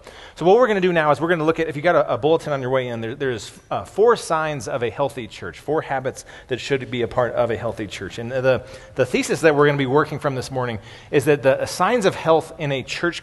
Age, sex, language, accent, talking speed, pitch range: 30-49, male, English, American, 295 wpm, 125-150 Hz